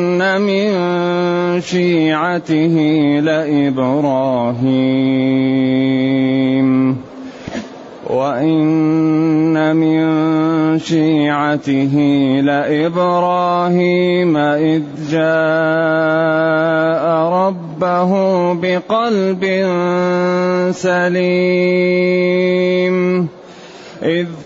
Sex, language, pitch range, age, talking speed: male, Arabic, 160-190 Hz, 30-49, 35 wpm